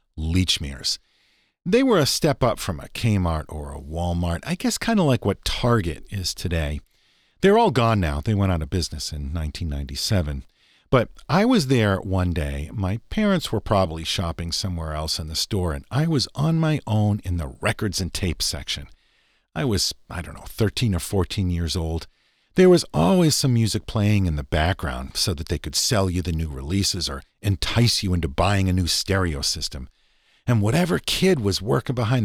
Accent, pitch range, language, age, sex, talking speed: American, 85-120 Hz, English, 50-69, male, 190 wpm